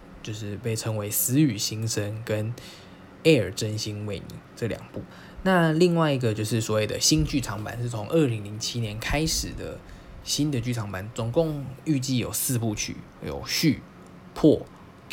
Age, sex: 20-39, male